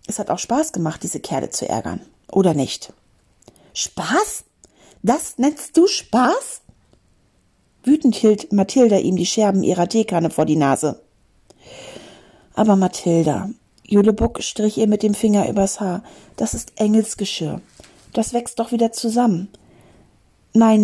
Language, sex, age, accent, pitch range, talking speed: German, female, 40-59, German, 190-235 Hz, 130 wpm